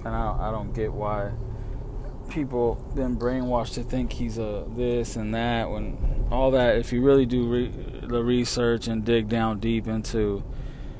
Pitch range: 110-130 Hz